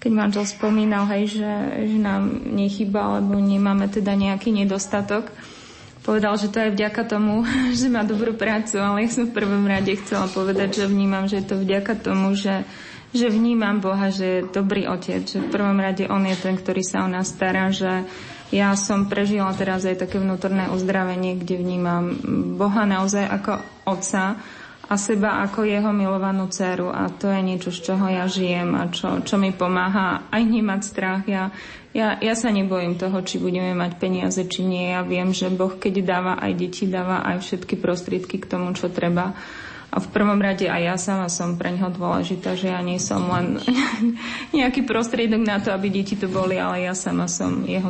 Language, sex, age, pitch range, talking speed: Slovak, female, 20-39, 185-210 Hz, 190 wpm